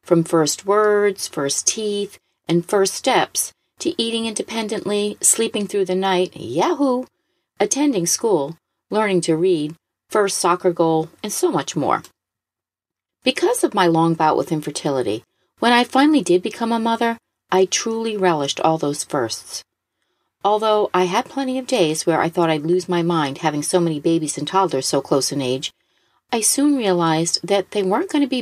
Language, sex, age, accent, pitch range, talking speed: English, female, 40-59, American, 165-210 Hz, 170 wpm